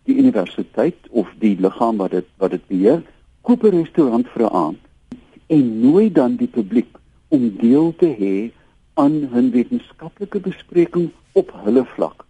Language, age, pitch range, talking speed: Dutch, 60-79, 115-180 Hz, 145 wpm